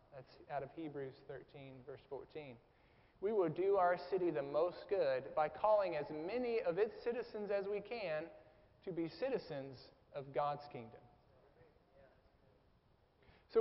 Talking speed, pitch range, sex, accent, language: 140 wpm, 150-200 Hz, male, American, English